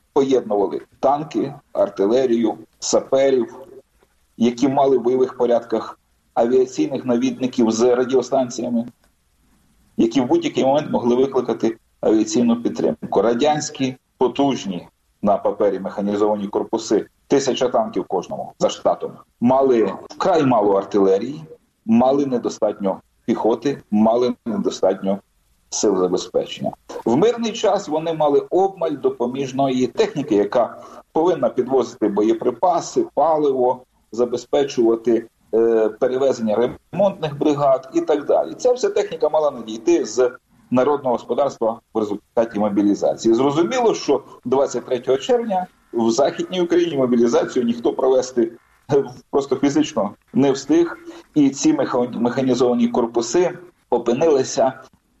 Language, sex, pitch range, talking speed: Ukrainian, male, 120-200 Hz, 105 wpm